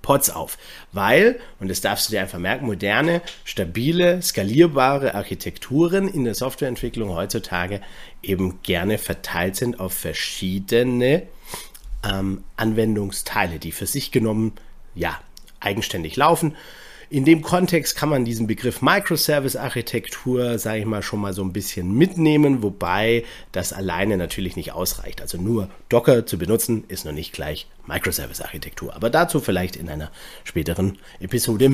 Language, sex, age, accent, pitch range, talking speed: German, male, 40-59, German, 100-140 Hz, 140 wpm